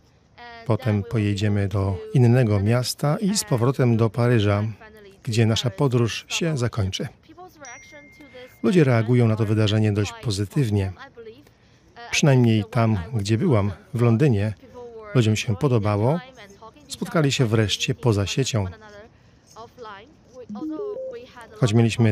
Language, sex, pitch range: Polish, male, 110-140 Hz